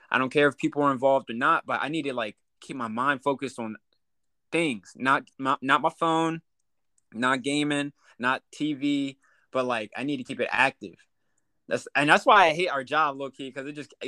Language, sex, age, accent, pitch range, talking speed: English, male, 20-39, American, 120-150 Hz, 215 wpm